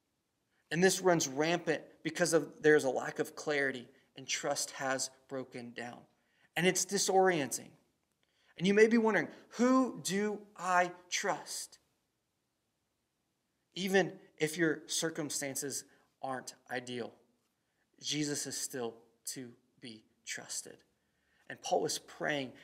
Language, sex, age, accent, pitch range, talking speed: English, male, 30-49, American, 130-165 Hz, 115 wpm